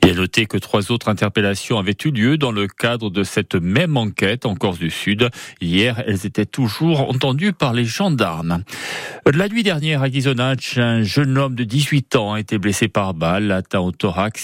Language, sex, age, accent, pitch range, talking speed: French, male, 40-59, French, 100-130 Hz, 200 wpm